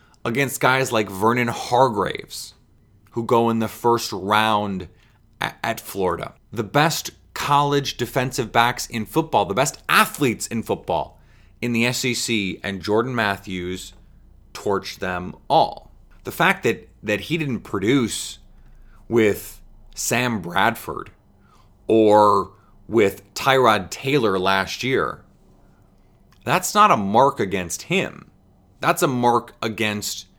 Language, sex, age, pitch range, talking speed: English, male, 30-49, 105-125 Hz, 120 wpm